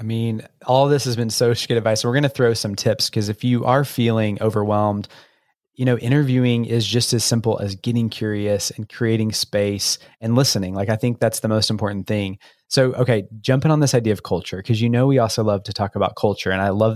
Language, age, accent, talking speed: English, 20-39, American, 230 wpm